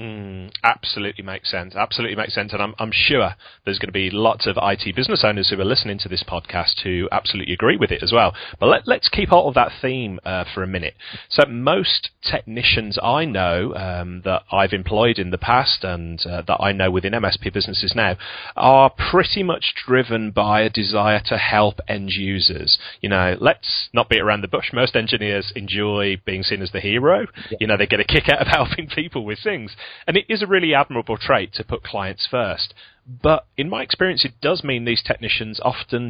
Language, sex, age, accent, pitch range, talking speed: English, male, 30-49, British, 95-125 Hz, 205 wpm